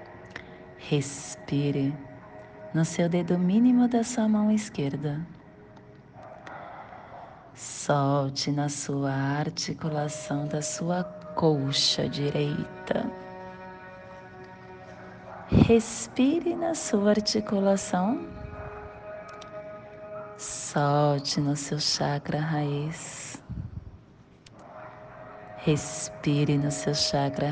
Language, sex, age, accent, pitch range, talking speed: English, female, 30-49, Brazilian, 135-165 Hz, 65 wpm